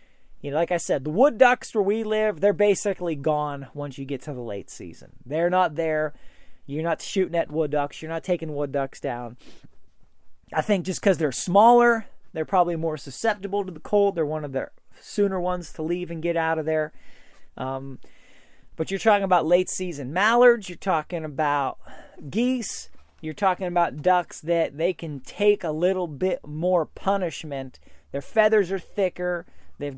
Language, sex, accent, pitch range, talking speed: English, male, American, 150-195 Hz, 185 wpm